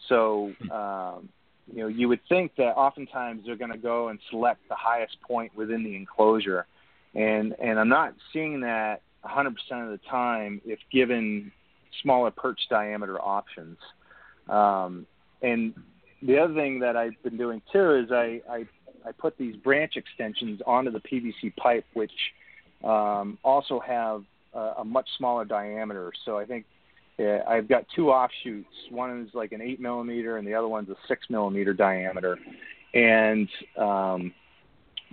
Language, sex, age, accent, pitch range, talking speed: English, male, 30-49, American, 105-120 Hz, 155 wpm